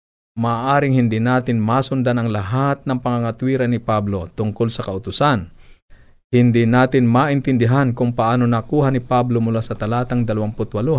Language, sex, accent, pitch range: Filipino, male, native, 105-125 Hz